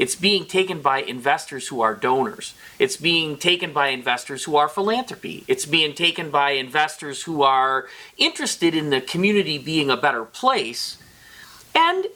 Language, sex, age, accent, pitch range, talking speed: English, male, 40-59, American, 150-245 Hz, 160 wpm